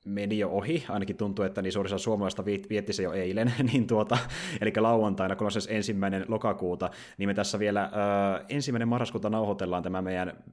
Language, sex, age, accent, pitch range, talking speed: Finnish, male, 30-49, native, 95-110 Hz, 180 wpm